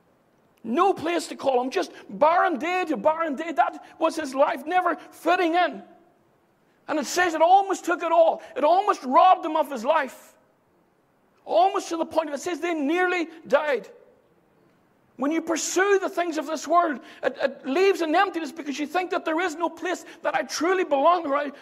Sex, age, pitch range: male, 60-79, 275-350 Hz